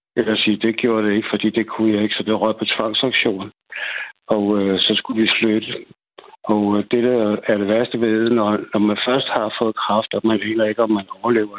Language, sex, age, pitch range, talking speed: Danish, male, 60-79, 110-120 Hz, 235 wpm